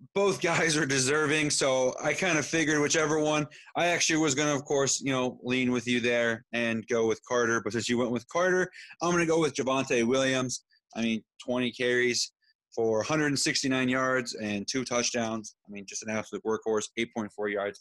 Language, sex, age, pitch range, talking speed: English, male, 30-49, 115-145 Hz, 200 wpm